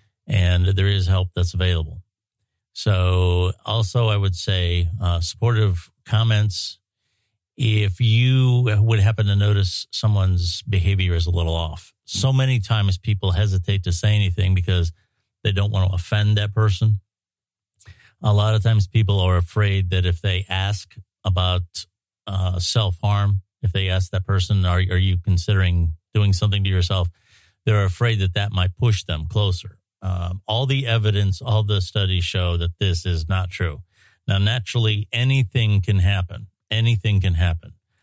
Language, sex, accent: English, male, American